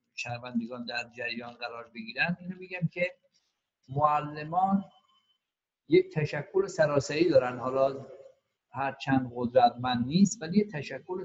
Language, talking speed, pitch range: Persian, 115 wpm, 130-185 Hz